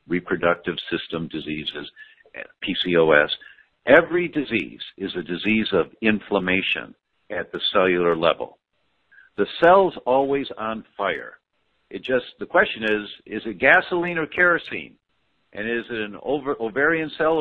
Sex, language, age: male, English, 60-79